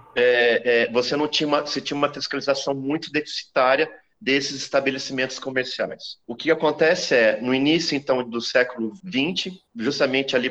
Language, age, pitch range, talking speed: Portuguese, 30-49, 125-155 Hz, 155 wpm